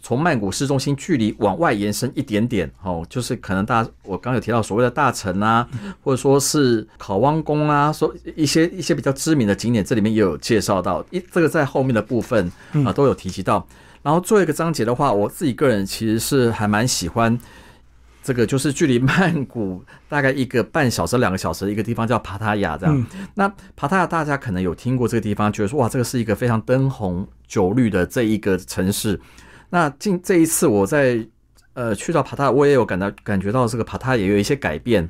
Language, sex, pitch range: Chinese, male, 100-135 Hz